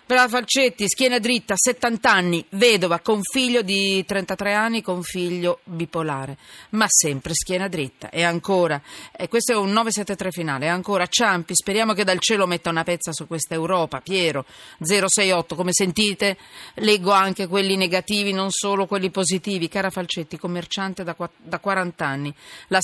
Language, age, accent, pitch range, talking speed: Italian, 40-59, native, 160-205 Hz, 155 wpm